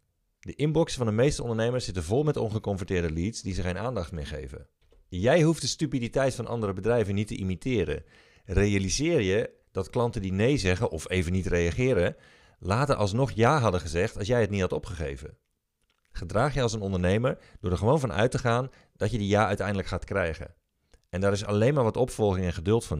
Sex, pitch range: male, 95-120 Hz